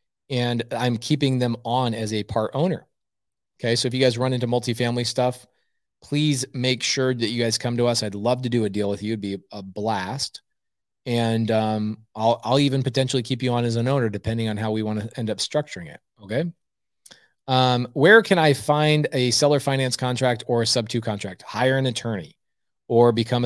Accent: American